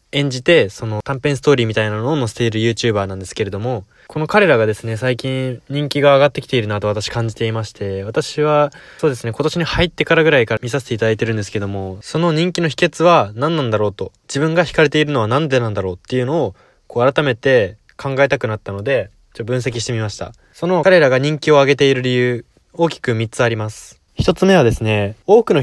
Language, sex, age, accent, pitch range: Japanese, male, 20-39, native, 110-155 Hz